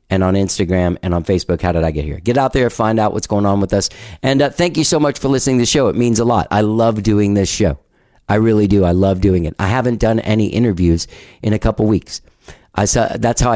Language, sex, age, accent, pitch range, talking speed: English, male, 50-69, American, 95-125 Hz, 270 wpm